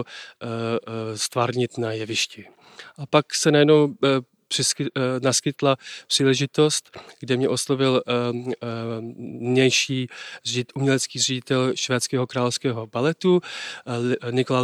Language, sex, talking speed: Slovak, male, 80 wpm